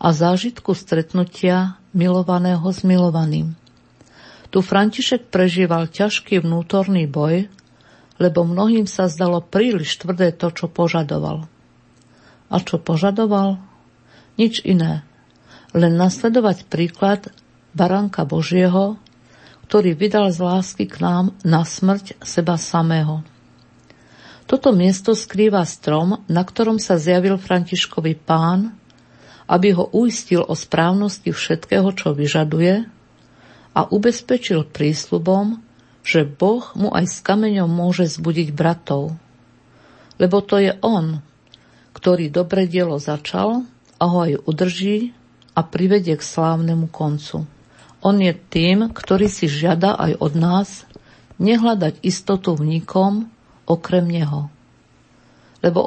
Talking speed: 110 wpm